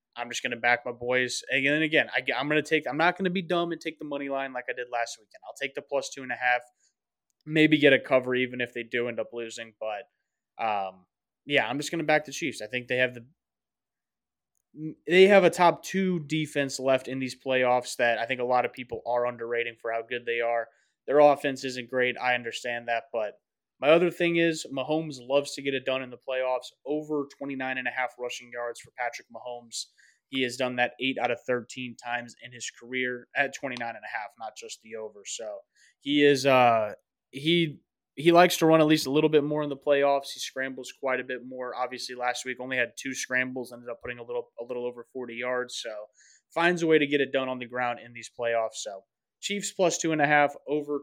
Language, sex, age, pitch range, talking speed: English, male, 20-39, 120-150 Hz, 235 wpm